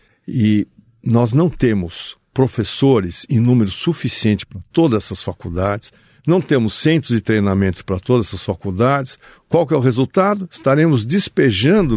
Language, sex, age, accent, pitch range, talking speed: Portuguese, male, 60-79, Brazilian, 110-165 Hz, 140 wpm